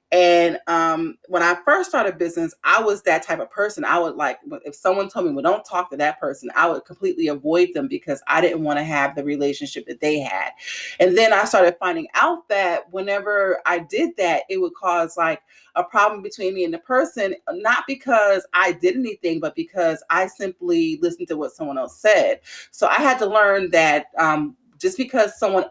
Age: 30-49